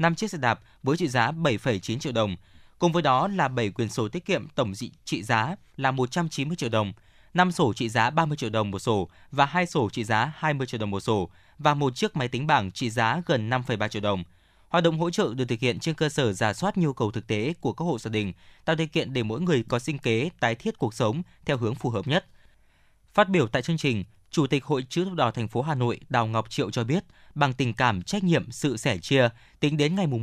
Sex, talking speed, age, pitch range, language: male, 255 wpm, 20-39, 115-160 Hz, Vietnamese